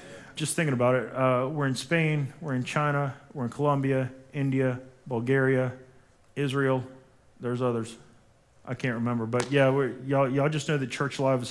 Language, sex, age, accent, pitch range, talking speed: English, male, 40-59, American, 125-150 Hz, 170 wpm